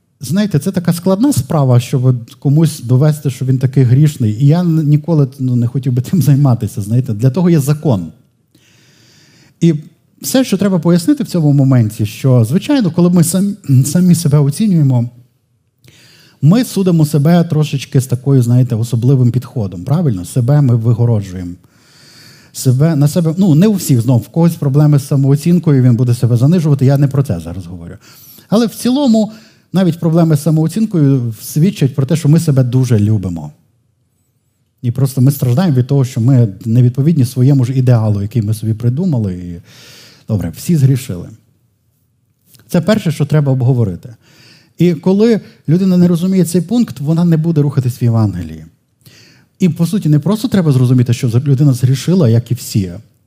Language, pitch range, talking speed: Ukrainian, 120-160 Hz, 160 wpm